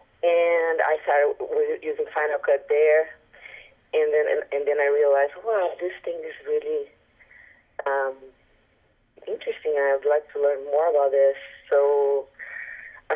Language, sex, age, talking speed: English, female, 30-49, 140 wpm